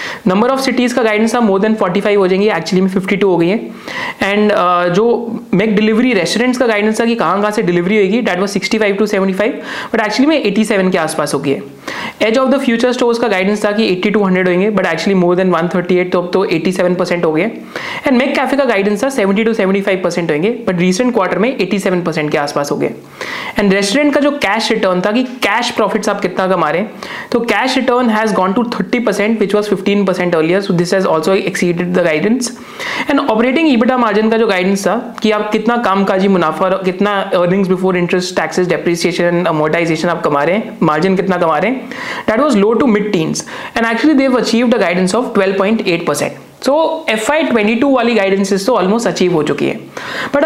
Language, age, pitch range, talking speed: Hindi, 30-49, 185-235 Hz, 150 wpm